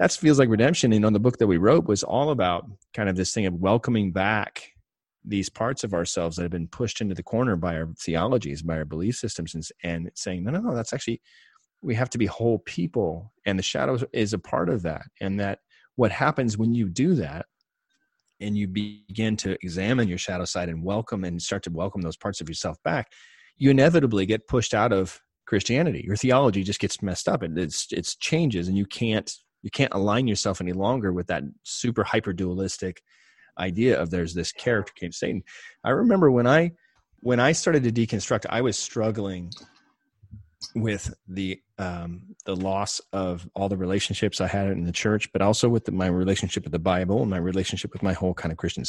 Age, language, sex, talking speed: 30-49, English, male, 210 wpm